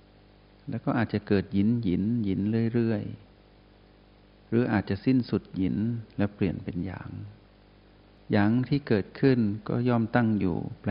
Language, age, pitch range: Thai, 60-79, 95-110 Hz